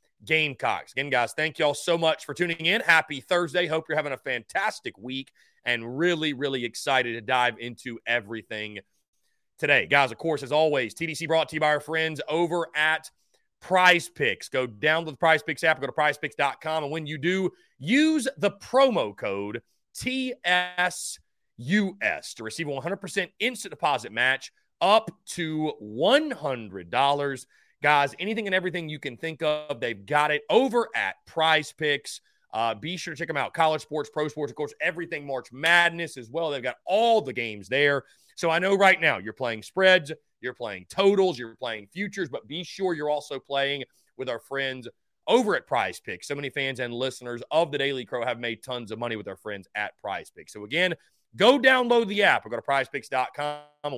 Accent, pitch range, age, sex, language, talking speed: American, 130-175 Hz, 30-49, male, English, 190 wpm